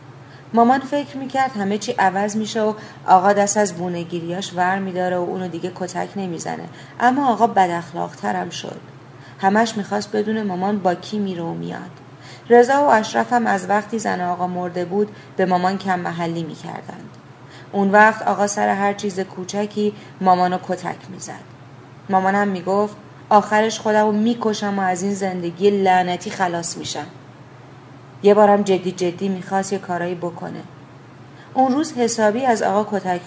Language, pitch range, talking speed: Persian, 170-205 Hz, 155 wpm